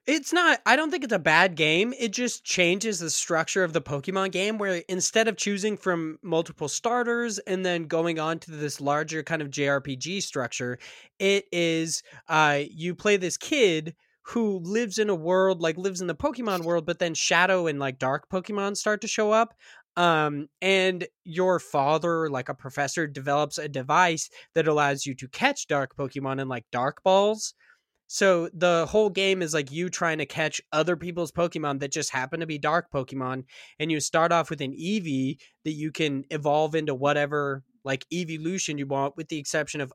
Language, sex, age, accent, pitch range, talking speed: English, male, 20-39, American, 140-180 Hz, 190 wpm